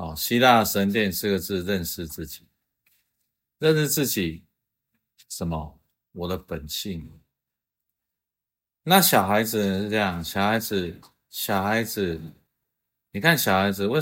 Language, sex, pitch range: Chinese, male, 95-140 Hz